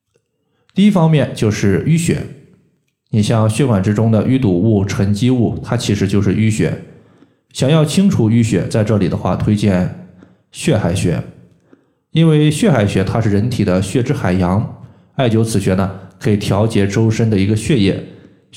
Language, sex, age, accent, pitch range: Chinese, male, 20-39, native, 100-125 Hz